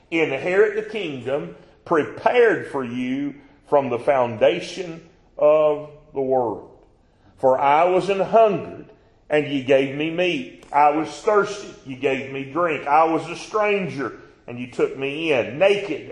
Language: English